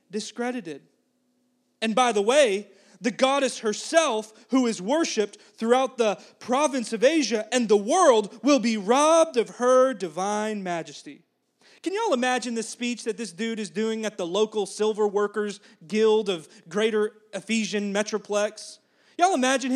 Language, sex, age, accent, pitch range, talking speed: English, male, 30-49, American, 200-255 Hz, 145 wpm